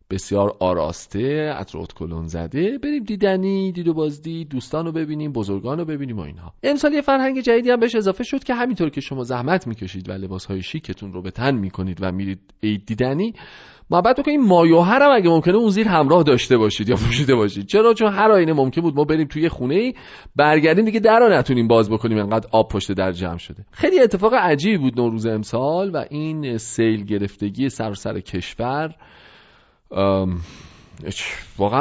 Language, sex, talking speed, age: Persian, male, 170 wpm, 40-59